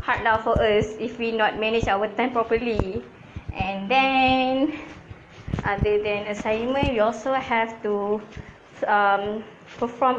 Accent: Malaysian